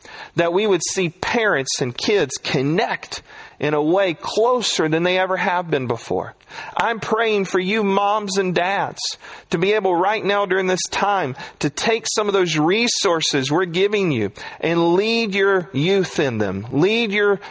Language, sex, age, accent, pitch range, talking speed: English, male, 40-59, American, 155-215 Hz, 170 wpm